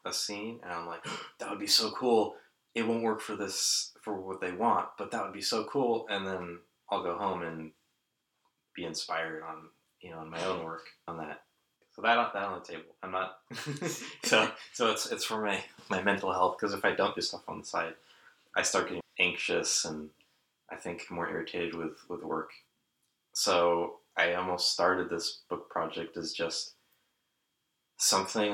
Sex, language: male, English